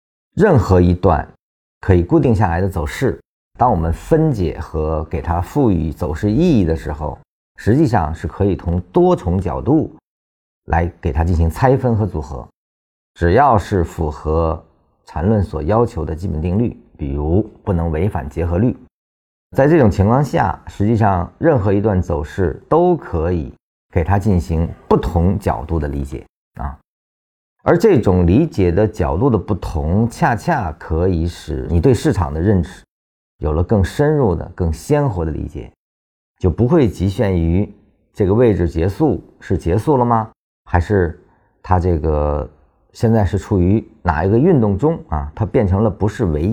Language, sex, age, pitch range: Chinese, male, 50-69, 80-105 Hz